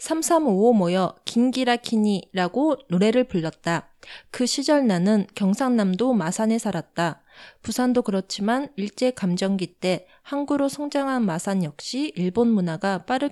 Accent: Korean